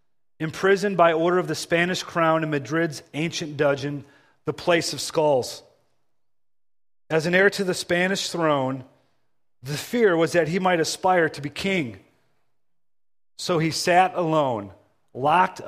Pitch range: 145-180 Hz